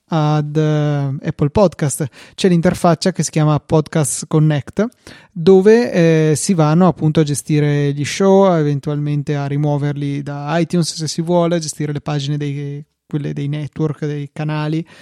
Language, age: Italian, 20-39